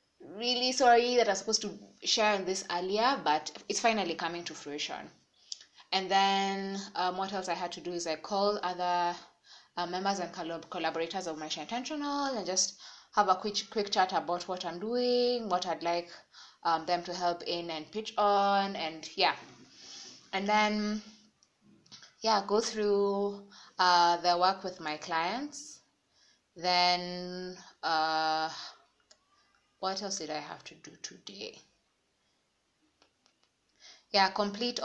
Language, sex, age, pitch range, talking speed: English, female, 20-39, 170-205 Hz, 145 wpm